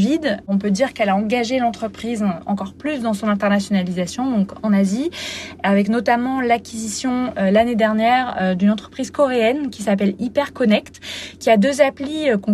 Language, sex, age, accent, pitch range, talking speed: French, female, 20-39, French, 205-255 Hz, 165 wpm